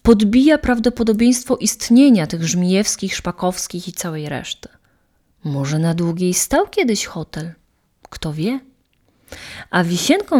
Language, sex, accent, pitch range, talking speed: Polish, female, native, 175-230 Hz, 110 wpm